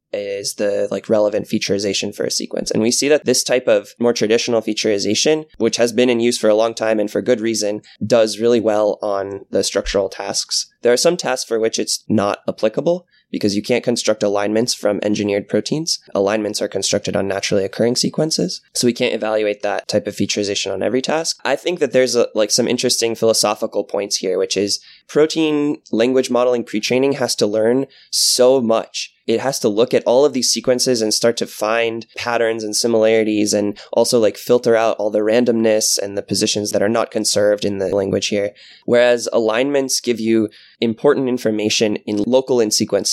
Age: 20-39